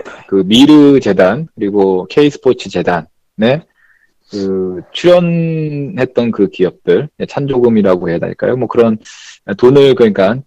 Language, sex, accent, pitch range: Korean, male, native, 115-175 Hz